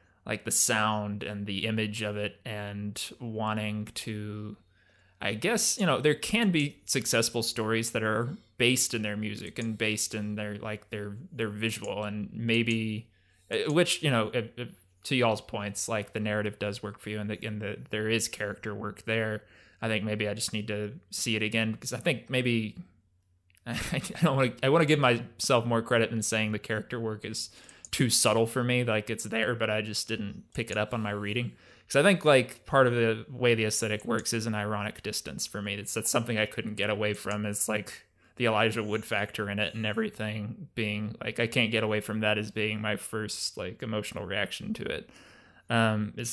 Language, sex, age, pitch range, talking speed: English, male, 20-39, 105-115 Hz, 205 wpm